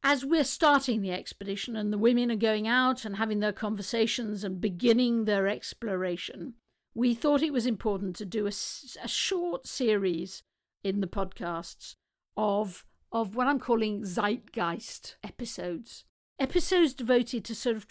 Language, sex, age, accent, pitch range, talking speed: English, female, 50-69, British, 205-250 Hz, 150 wpm